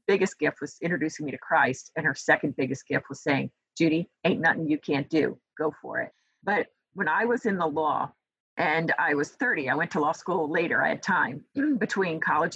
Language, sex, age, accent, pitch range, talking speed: English, female, 40-59, American, 165-240 Hz, 215 wpm